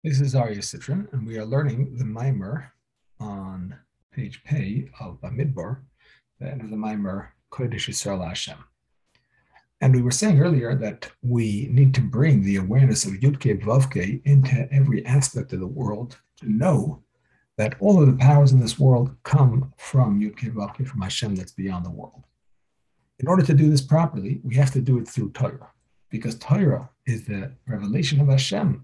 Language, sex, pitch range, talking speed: English, male, 120-140 Hz, 175 wpm